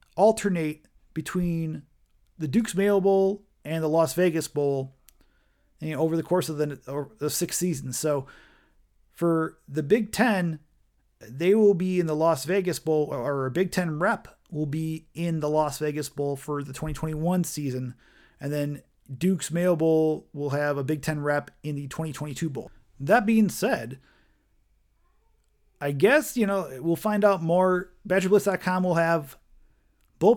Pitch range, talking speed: 155-190 Hz, 155 wpm